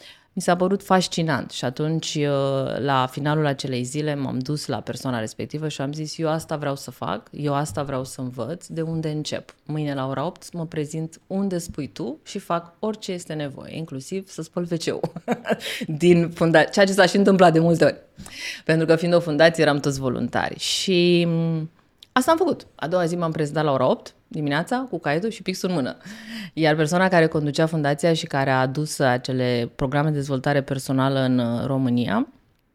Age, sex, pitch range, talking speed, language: 20-39, female, 145-195 Hz, 185 wpm, Romanian